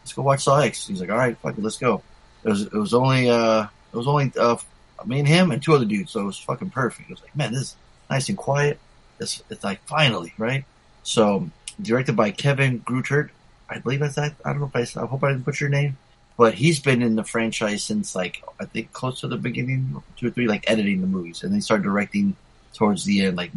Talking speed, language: 250 wpm, English